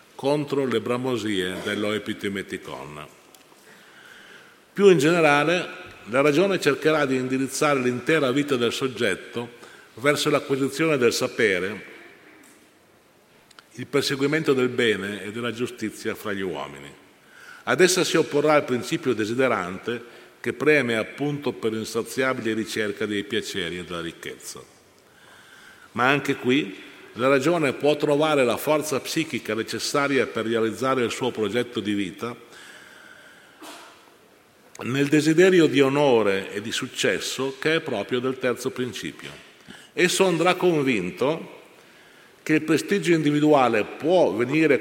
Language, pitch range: Italian, 115-150 Hz